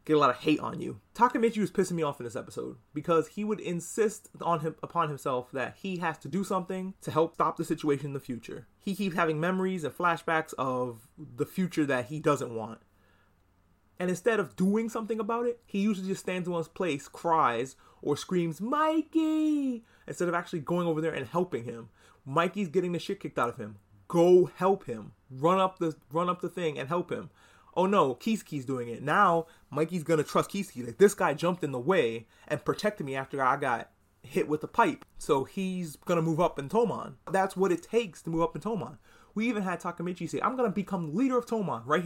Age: 30-49